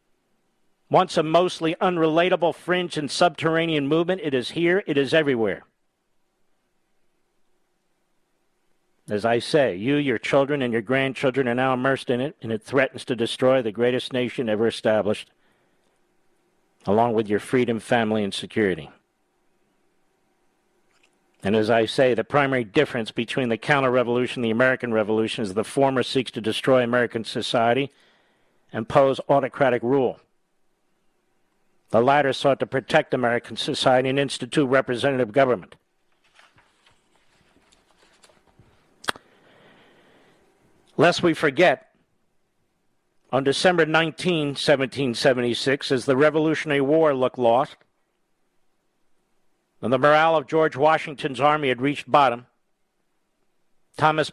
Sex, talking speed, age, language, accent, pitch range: male, 115 wpm, 50-69, English, American, 125-155 Hz